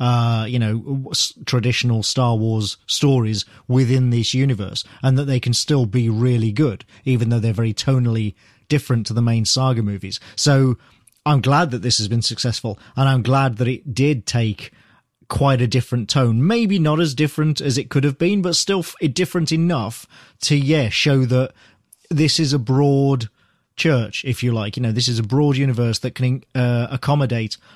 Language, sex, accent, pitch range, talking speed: English, male, British, 115-140 Hz, 180 wpm